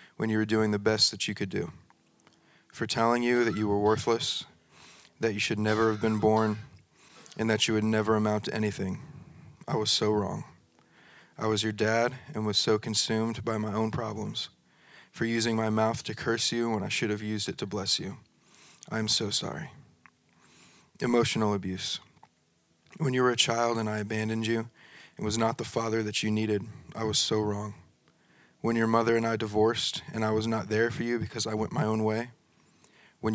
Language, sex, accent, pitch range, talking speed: English, male, American, 105-115 Hz, 200 wpm